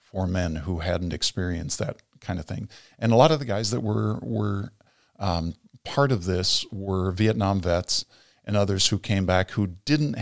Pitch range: 90-105 Hz